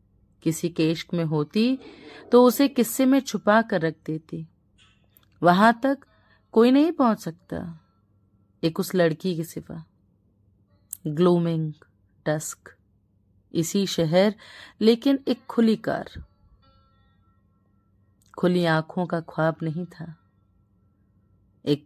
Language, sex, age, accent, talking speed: Hindi, female, 30-49, native, 105 wpm